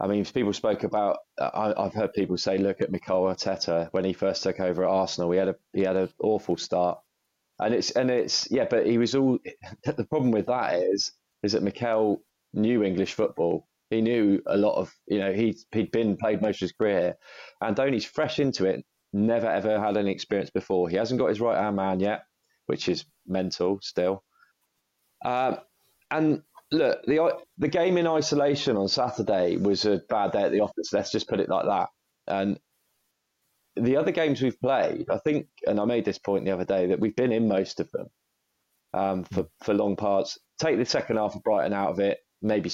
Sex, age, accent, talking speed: male, 20-39, British, 210 wpm